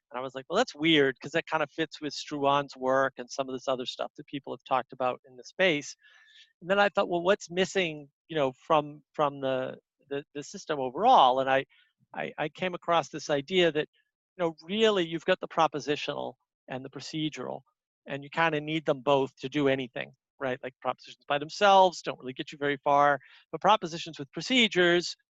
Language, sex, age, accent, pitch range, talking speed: English, male, 40-59, American, 135-165 Hz, 210 wpm